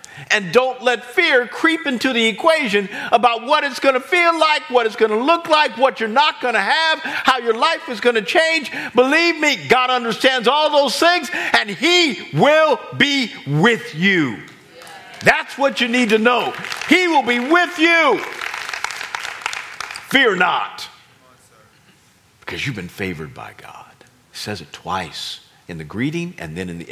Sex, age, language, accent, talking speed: male, 50-69, English, American, 170 wpm